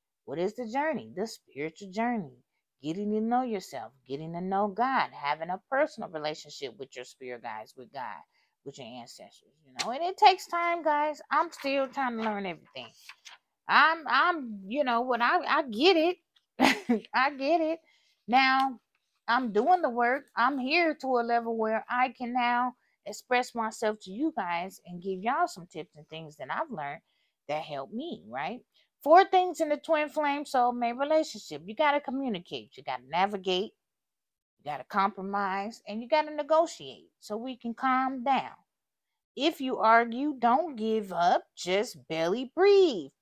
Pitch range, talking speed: 185-300 Hz, 175 wpm